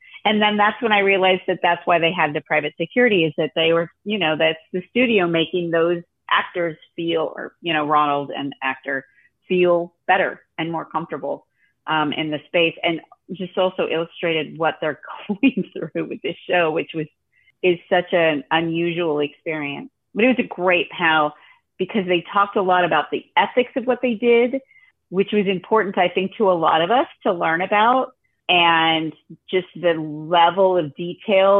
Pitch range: 160-200 Hz